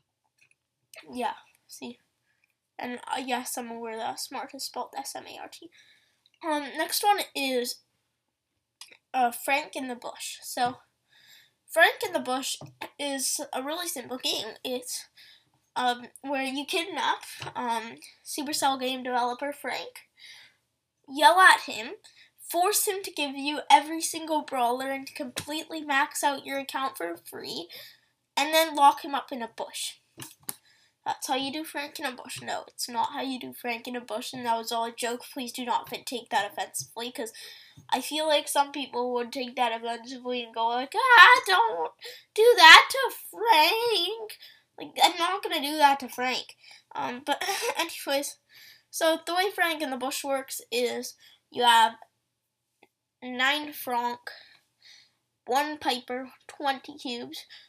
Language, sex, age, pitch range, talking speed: English, female, 10-29, 250-335 Hz, 155 wpm